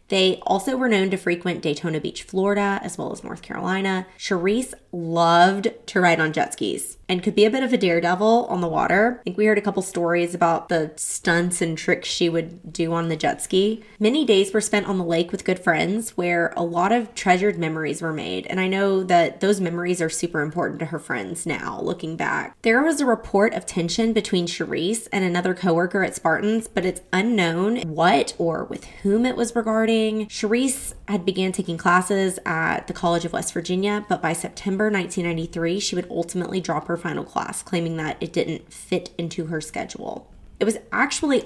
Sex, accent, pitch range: female, American, 170-210 Hz